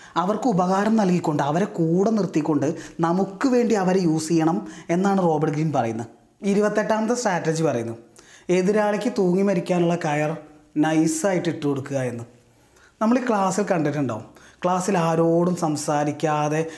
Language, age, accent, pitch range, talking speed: Malayalam, 20-39, native, 150-195 Hz, 120 wpm